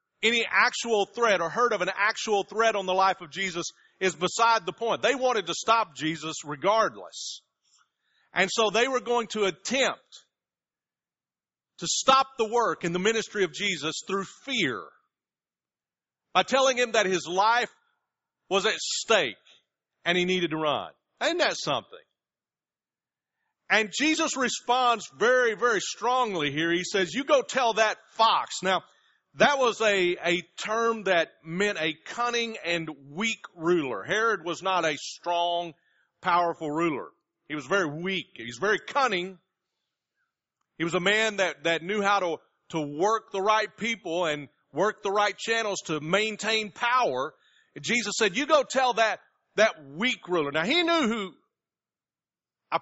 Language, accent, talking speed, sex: English, American, 155 wpm, male